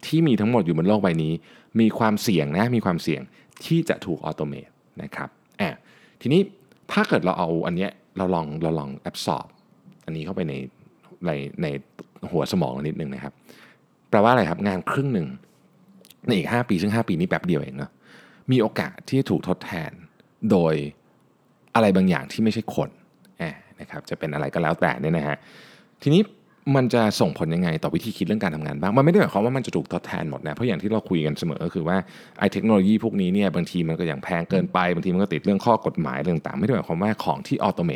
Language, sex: Thai, male